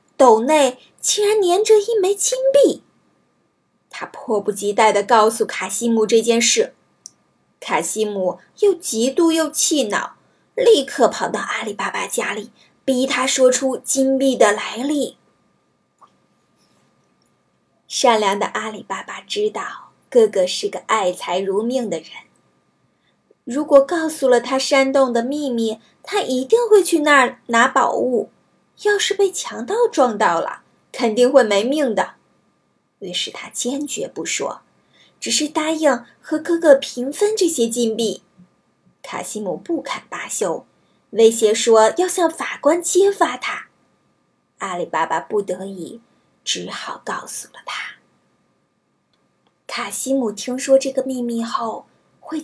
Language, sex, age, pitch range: Chinese, female, 20-39, 225-325 Hz